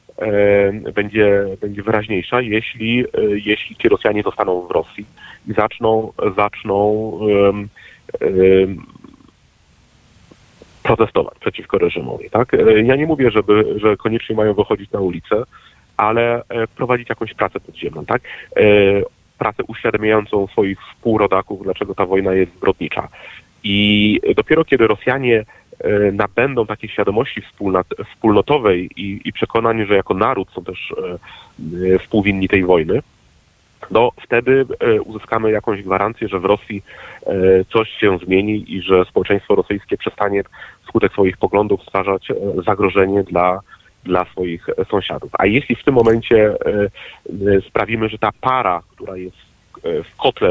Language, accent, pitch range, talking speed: Polish, native, 95-110 Hz, 125 wpm